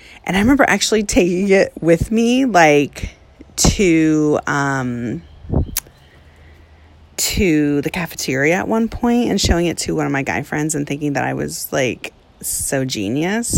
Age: 30-49